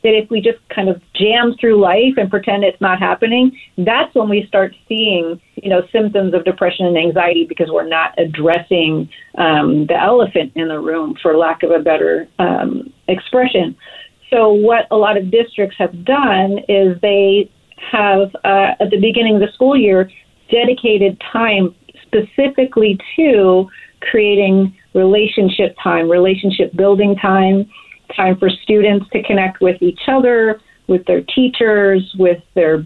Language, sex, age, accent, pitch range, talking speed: English, female, 40-59, American, 185-230 Hz, 155 wpm